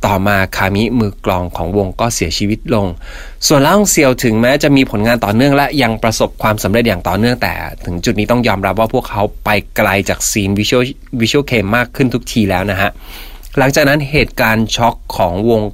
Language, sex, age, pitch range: Thai, male, 20-39, 95-125 Hz